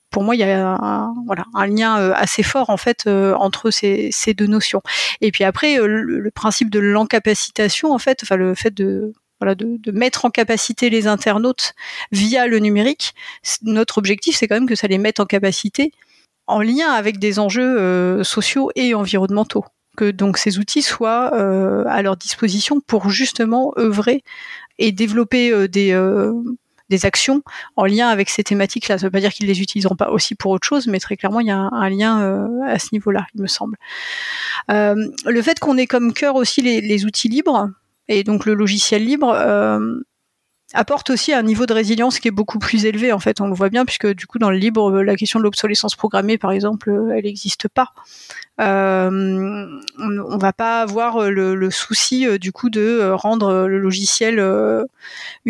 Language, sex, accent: French, female, French